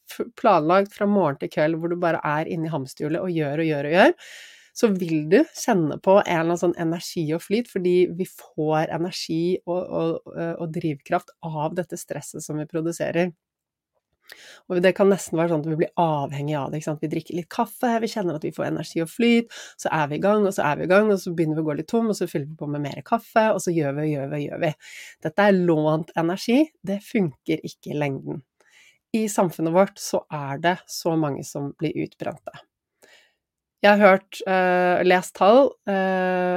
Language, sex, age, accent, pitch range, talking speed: English, female, 30-49, Swedish, 155-195 Hz, 215 wpm